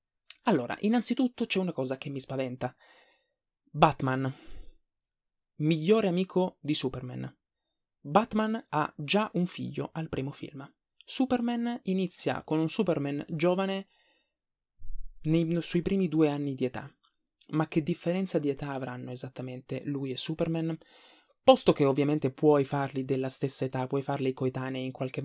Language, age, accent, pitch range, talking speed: Italian, 20-39, native, 140-180 Hz, 135 wpm